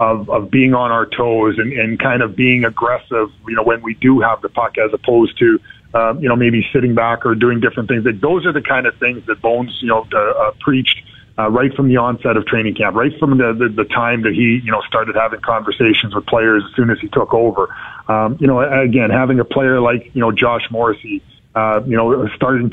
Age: 40-59